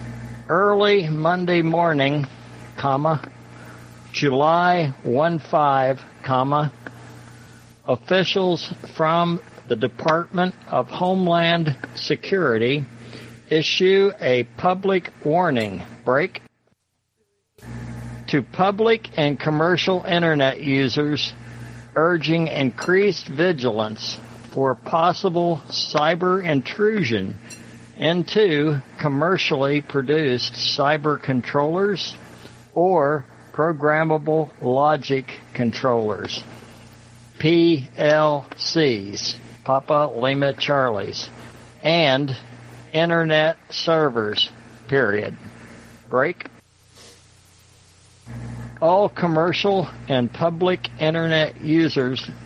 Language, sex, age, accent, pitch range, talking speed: English, male, 60-79, American, 120-165 Hz, 65 wpm